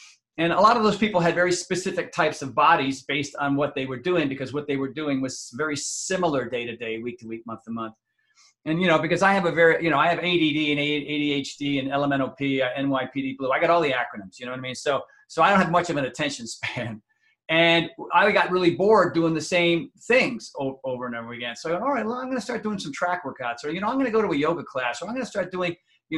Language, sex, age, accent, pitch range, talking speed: English, male, 40-59, American, 140-185 Hz, 260 wpm